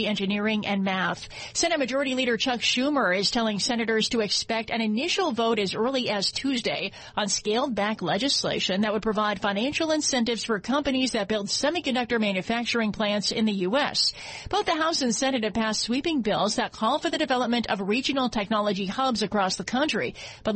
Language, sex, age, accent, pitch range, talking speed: English, female, 40-59, American, 210-250 Hz, 180 wpm